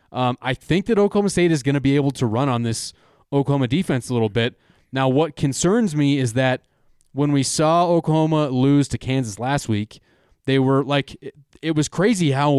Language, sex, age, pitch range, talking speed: English, male, 20-39, 125-155 Hz, 205 wpm